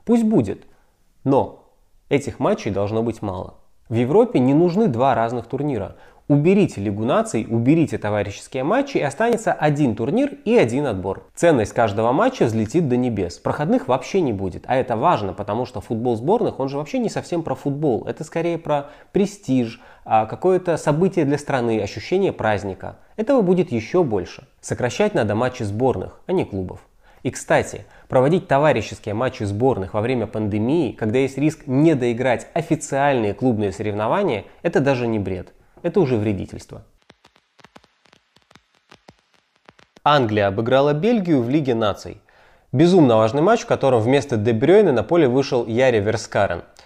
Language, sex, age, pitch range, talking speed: Russian, male, 20-39, 110-160 Hz, 145 wpm